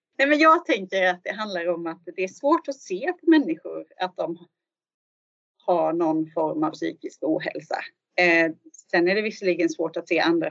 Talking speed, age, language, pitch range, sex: 170 wpm, 30-49, Swedish, 175-220 Hz, female